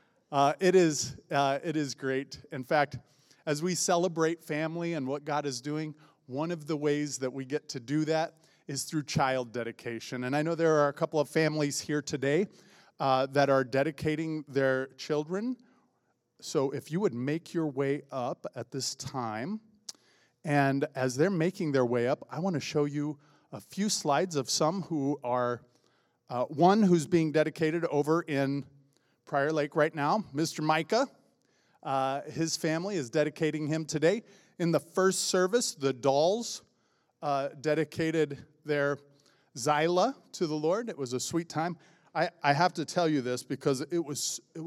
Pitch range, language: 135-165 Hz, English